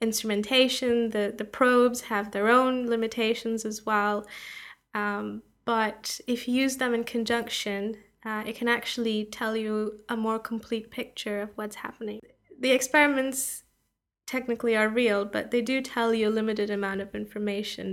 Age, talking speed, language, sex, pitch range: 10-29, 155 wpm, English, female, 205-235 Hz